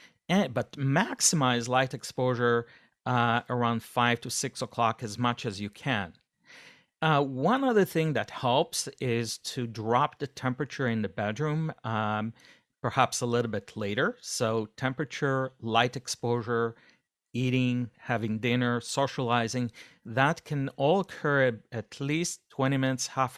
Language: English